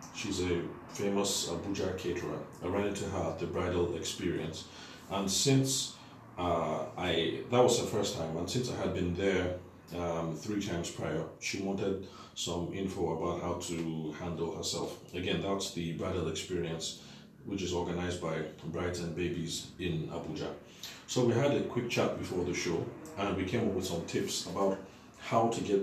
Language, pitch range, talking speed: English, 85-100 Hz, 175 wpm